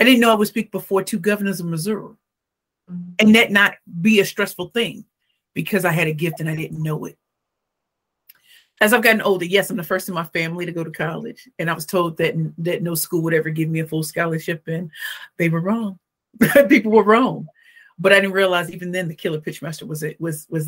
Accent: American